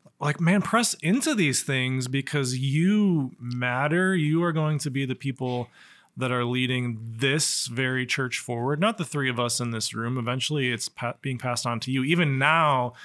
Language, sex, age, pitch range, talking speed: English, male, 20-39, 120-155 Hz, 185 wpm